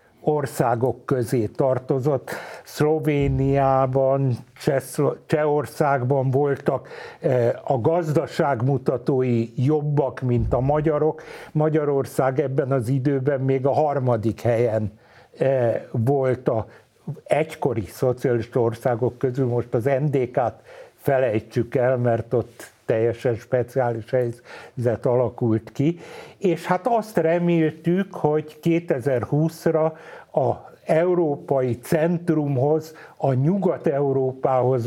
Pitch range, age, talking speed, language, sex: 125-155 Hz, 60-79, 85 wpm, Hungarian, male